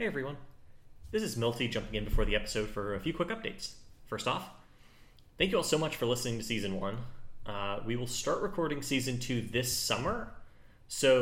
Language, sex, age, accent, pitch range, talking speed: English, male, 30-49, American, 105-125 Hz, 200 wpm